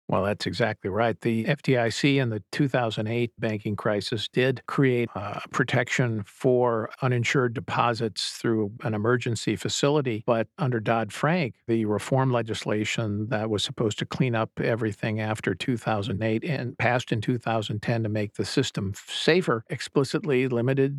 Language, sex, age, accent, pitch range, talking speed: English, male, 50-69, American, 110-140 Hz, 135 wpm